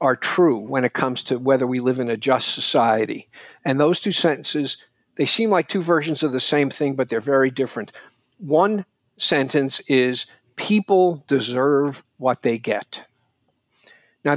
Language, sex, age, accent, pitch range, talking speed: English, male, 50-69, American, 125-155 Hz, 165 wpm